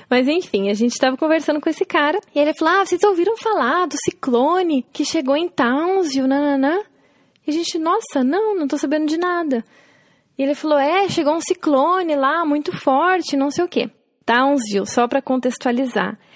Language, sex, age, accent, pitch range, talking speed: English, female, 10-29, Brazilian, 240-315 Hz, 185 wpm